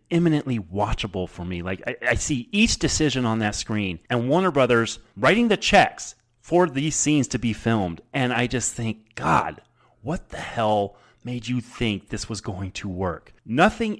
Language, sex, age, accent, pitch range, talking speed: English, male, 30-49, American, 105-150 Hz, 180 wpm